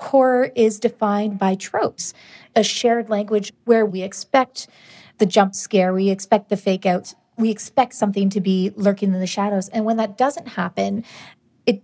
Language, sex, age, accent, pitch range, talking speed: English, female, 30-49, American, 185-225 Hz, 165 wpm